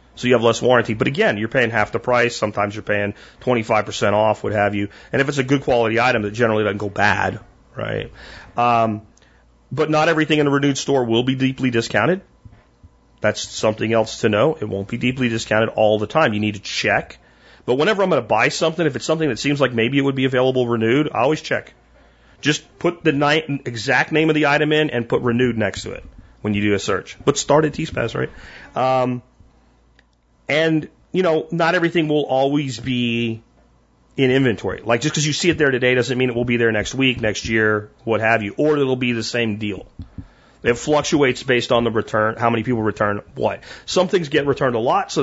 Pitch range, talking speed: 110-140 Hz, 225 wpm